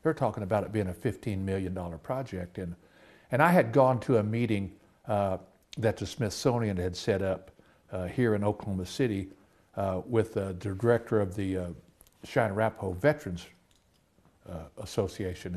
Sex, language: male, English